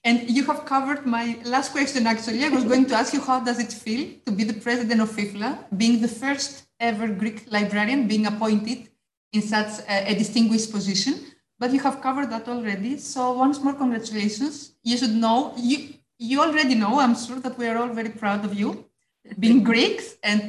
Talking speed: 200 wpm